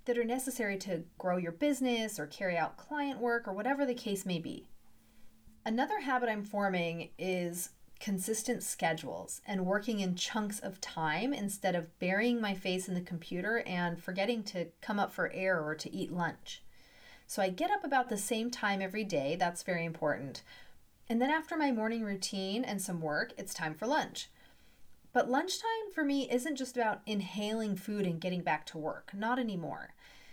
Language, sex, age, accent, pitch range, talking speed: English, female, 40-59, American, 175-240 Hz, 180 wpm